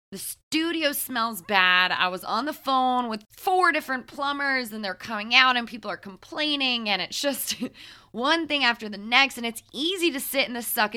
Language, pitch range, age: English, 205-265 Hz, 20-39